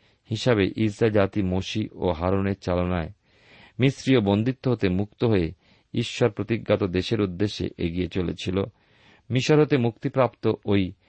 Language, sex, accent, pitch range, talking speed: Bengali, male, native, 95-120 Hz, 115 wpm